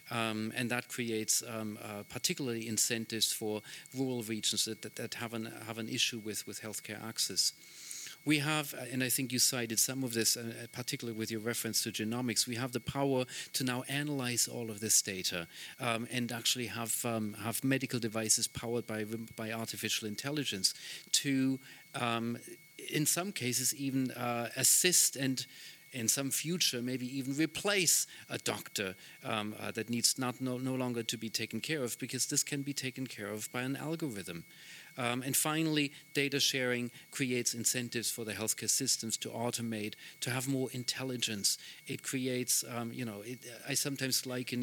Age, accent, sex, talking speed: 40-59, German, male, 175 wpm